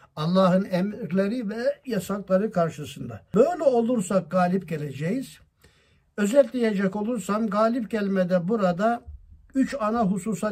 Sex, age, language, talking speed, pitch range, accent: male, 60-79, Turkish, 95 wpm, 160-210 Hz, native